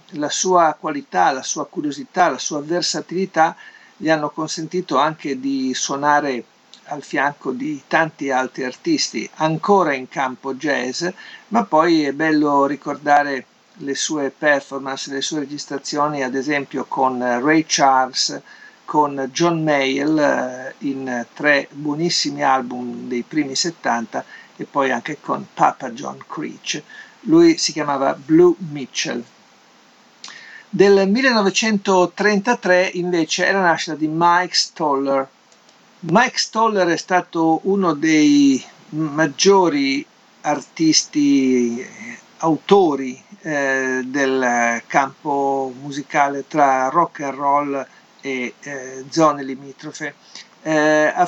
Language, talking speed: Italian, 110 wpm